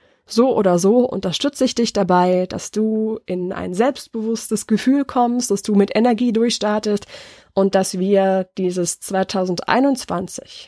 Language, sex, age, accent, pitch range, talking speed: German, female, 20-39, German, 185-225 Hz, 135 wpm